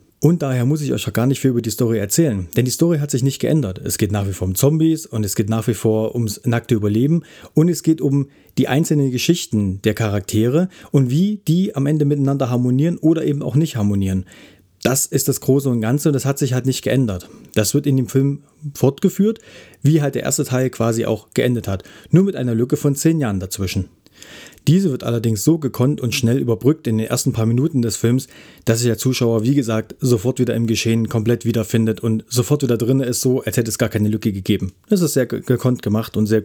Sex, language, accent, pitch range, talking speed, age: male, German, German, 110-140 Hz, 230 wpm, 40-59